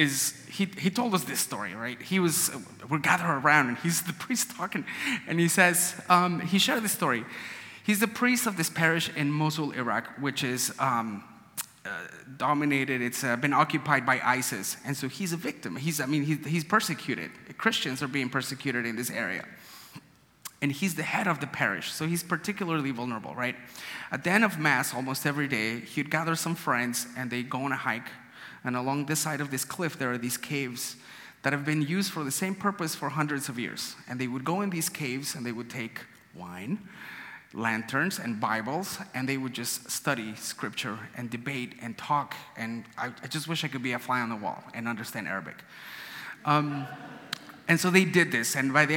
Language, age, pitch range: English, 30-49, 130-170 Hz